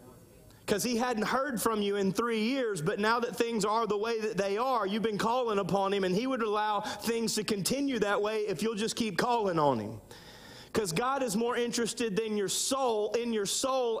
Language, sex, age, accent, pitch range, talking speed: English, male, 30-49, American, 215-265 Hz, 210 wpm